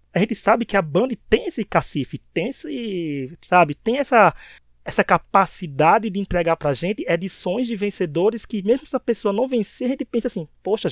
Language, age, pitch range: Portuguese, 20-39, 170-225 Hz